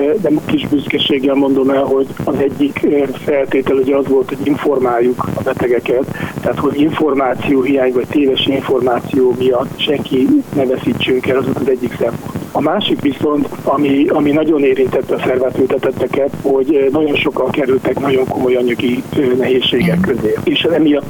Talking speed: 150 wpm